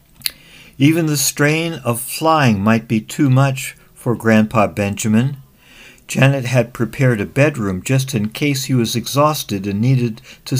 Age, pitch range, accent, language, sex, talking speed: 60-79, 115-150 Hz, American, English, male, 145 wpm